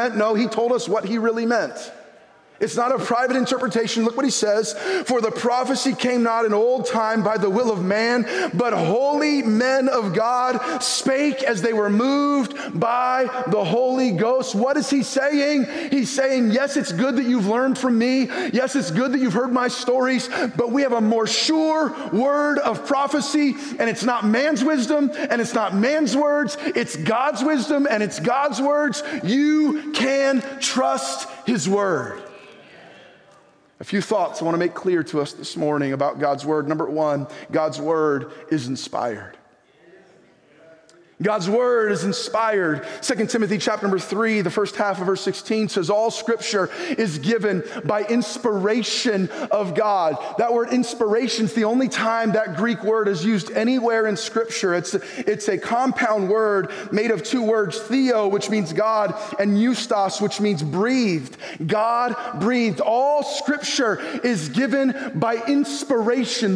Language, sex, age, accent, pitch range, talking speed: English, male, 30-49, American, 210-260 Hz, 165 wpm